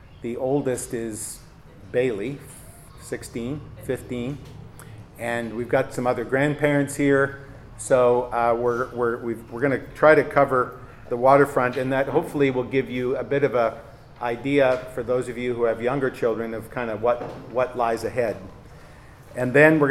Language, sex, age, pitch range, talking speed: English, male, 50-69, 120-140 Hz, 155 wpm